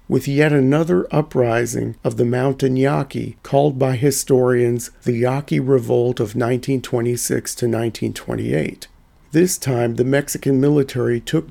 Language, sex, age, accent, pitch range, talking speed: English, male, 50-69, American, 125-145 Hz, 125 wpm